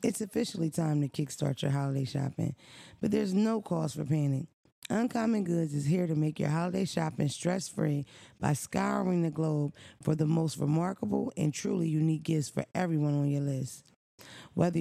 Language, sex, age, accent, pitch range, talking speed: English, female, 20-39, American, 150-185 Hz, 170 wpm